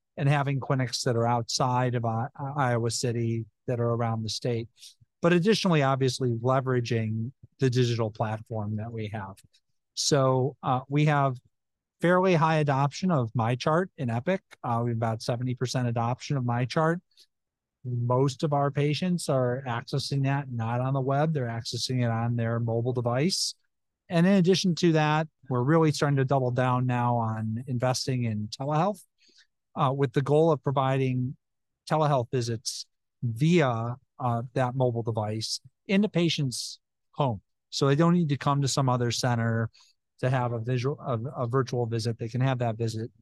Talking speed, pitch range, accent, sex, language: 160 wpm, 115-145 Hz, American, male, English